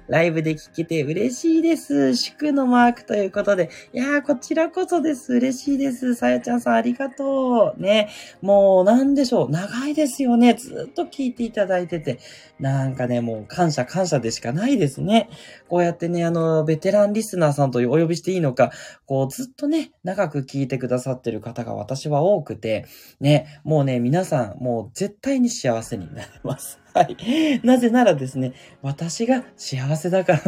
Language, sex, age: Japanese, male, 20-39